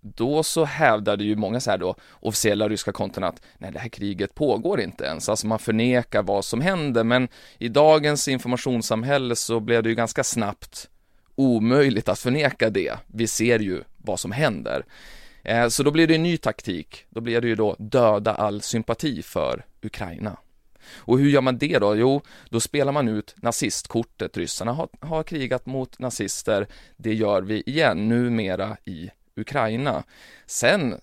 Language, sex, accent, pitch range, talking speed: Swedish, male, native, 110-130 Hz, 170 wpm